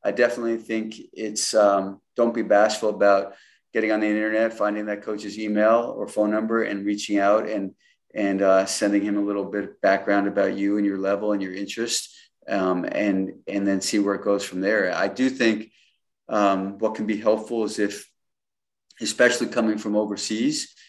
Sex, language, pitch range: male, English, 100-110 Hz